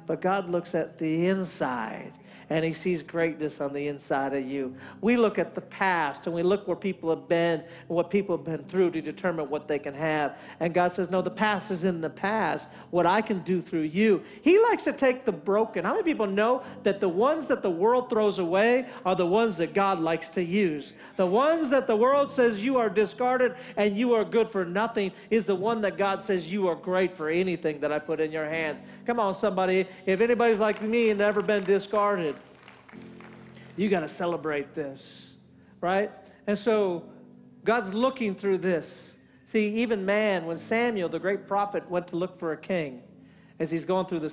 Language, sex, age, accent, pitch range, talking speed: English, male, 50-69, American, 160-210 Hz, 210 wpm